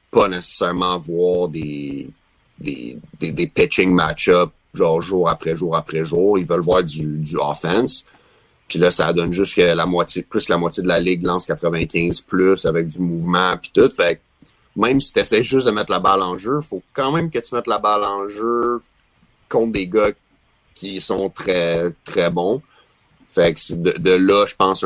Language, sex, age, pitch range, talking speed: French, male, 30-49, 80-90 Hz, 195 wpm